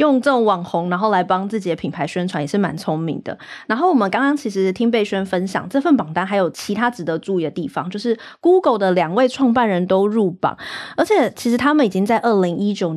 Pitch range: 175-230 Hz